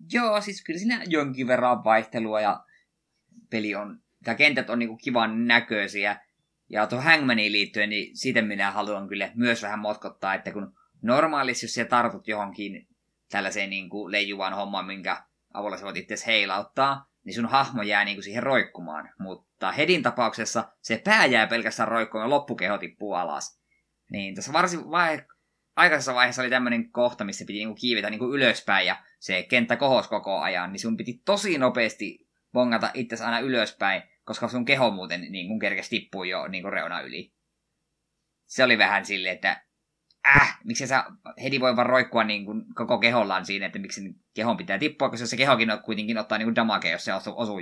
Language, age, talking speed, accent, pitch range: Finnish, 20-39, 170 wpm, native, 105-125 Hz